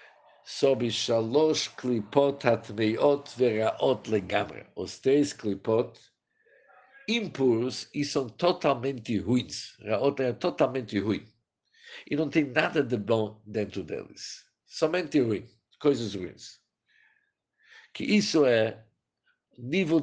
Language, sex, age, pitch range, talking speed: Portuguese, male, 50-69, 110-150 Hz, 110 wpm